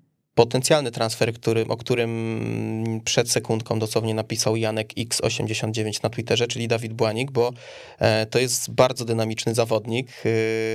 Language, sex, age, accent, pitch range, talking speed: Polish, male, 20-39, native, 115-130 Hz, 125 wpm